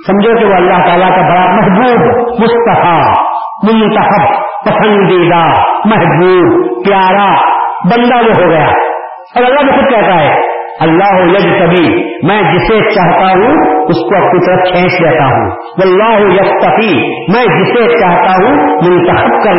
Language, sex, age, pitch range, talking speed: Urdu, female, 40-59, 160-235 Hz, 130 wpm